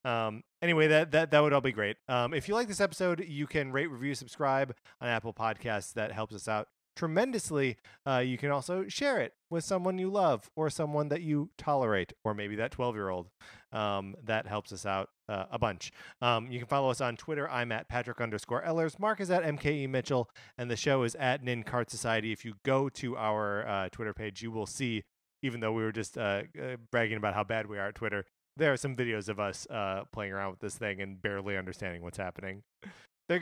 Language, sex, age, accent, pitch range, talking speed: English, male, 30-49, American, 105-145 Hz, 225 wpm